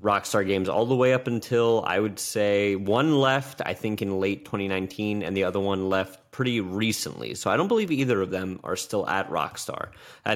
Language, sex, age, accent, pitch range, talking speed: English, male, 30-49, American, 95-125 Hz, 210 wpm